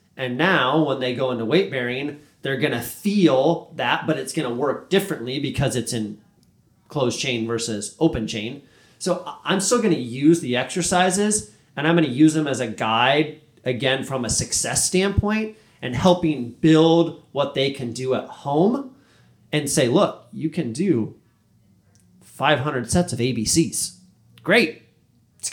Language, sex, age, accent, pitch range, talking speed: English, male, 30-49, American, 125-165 Hz, 165 wpm